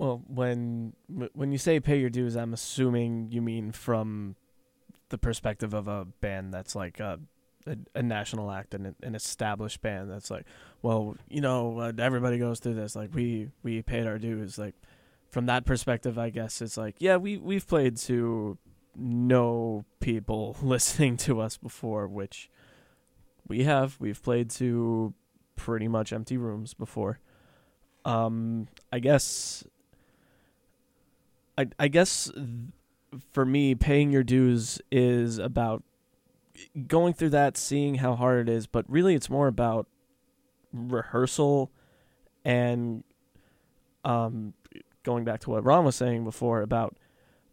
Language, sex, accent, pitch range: English, male, American, 110-130 Hz